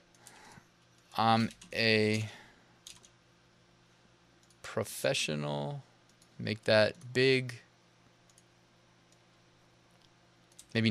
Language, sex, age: English, male, 20-39